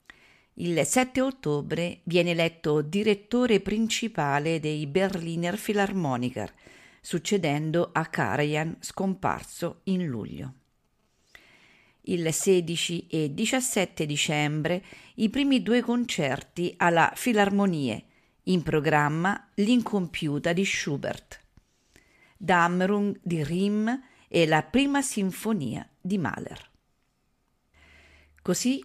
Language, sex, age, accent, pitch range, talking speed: English, female, 50-69, Italian, 155-210 Hz, 85 wpm